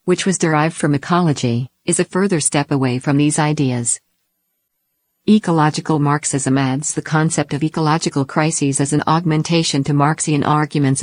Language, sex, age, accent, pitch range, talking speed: English, female, 50-69, American, 140-165 Hz, 145 wpm